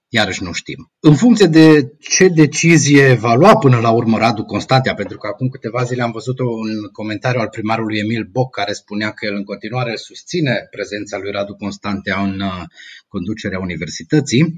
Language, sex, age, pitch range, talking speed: Romanian, male, 30-49, 110-160 Hz, 175 wpm